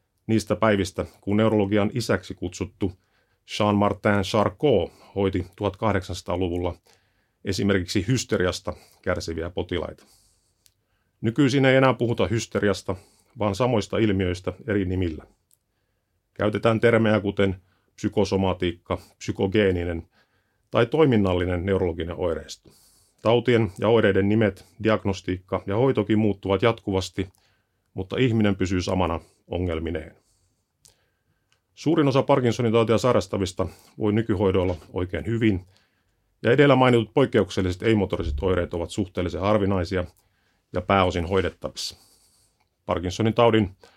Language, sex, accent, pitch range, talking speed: Finnish, male, native, 90-110 Hz, 95 wpm